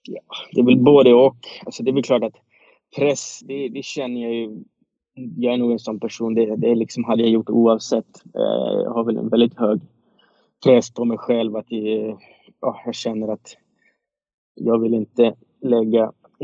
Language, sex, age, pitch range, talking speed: Swedish, male, 20-39, 110-125 Hz, 190 wpm